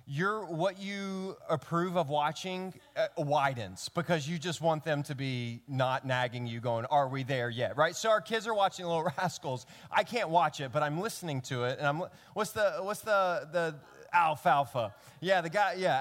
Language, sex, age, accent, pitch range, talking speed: English, male, 30-49, American, 125-175 Hz, 190 wpm